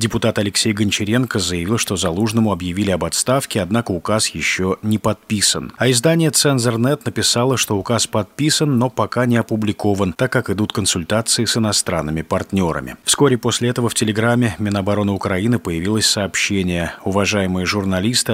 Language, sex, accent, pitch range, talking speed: Russian, male, native, 95-120 Hz, 140 wpm